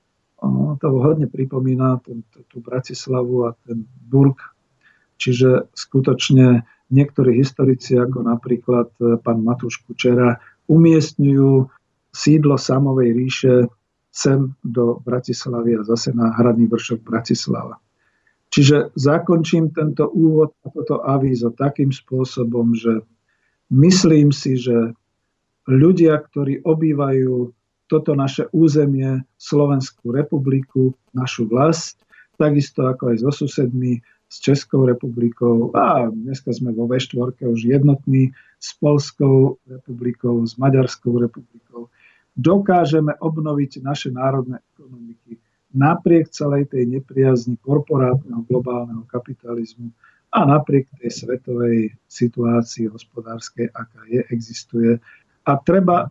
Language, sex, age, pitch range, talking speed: Slovak, male, 50-69, 120-145 Hz, 105 wpm